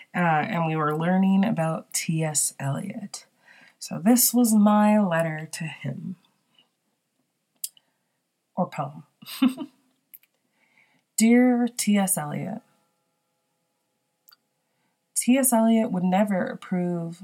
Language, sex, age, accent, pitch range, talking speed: English, female, 20-39, American, 175-215 Hz, 85 wpm